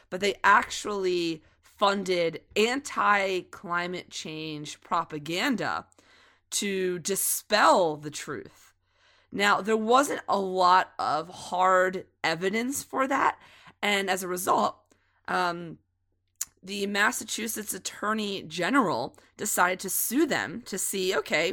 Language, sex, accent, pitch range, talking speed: English, female, American, 160-210 Hz, 105 wpm